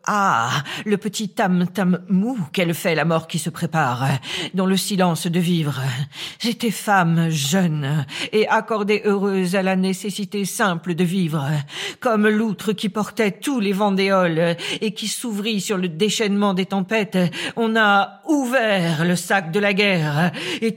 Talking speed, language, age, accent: 150 wpm, French, 50-69, French